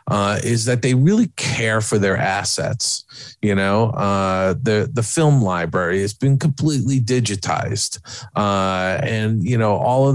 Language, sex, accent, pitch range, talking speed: English, male, American, 100-130 Hz, 155 wpm